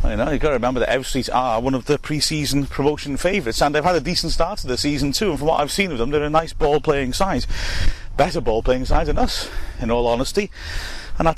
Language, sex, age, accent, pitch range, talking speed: English, male, 30-49, British, 110-140 Hz, 250 wpm